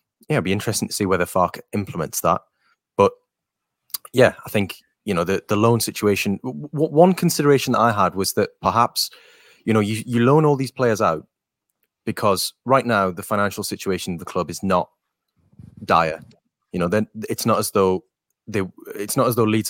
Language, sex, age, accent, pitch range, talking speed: English, male, 20-39, British, 90-110 Hz, 195 wpm